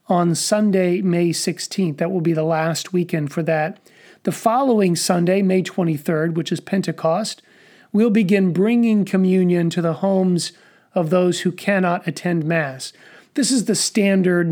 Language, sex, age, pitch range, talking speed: English, male, 40-59, 170-200 Hz, 155 wpm